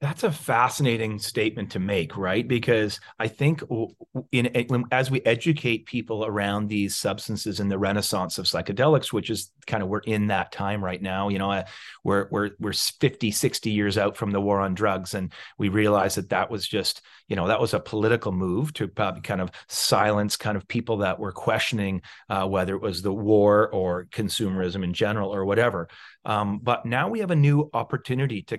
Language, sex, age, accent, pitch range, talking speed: English, male, 30-49, American, 105-130 Hz, 195 wpm